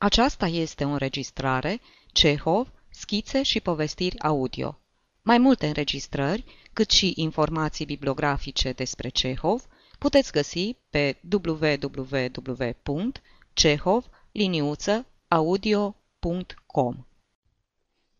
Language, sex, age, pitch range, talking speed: Romanian, female, 30-49, 135-205 Hz, 75 wpm